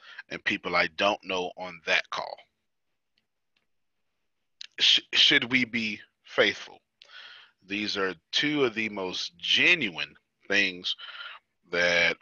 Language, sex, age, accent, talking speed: English, male, 30-49, American, 110 wpm